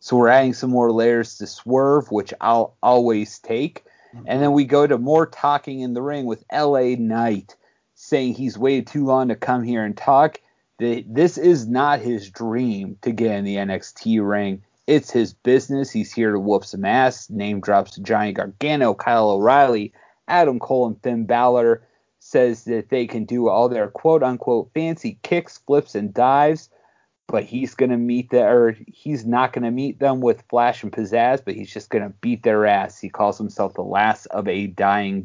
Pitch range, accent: 110-140 Hz, American